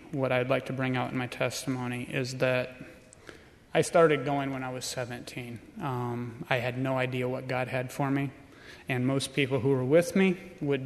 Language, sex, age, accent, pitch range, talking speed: English, male, 30-49, American, 125-140 Hz, 200 wpm